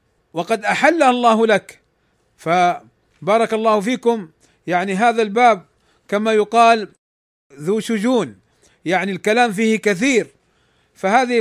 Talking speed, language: 100 wpm, Arabic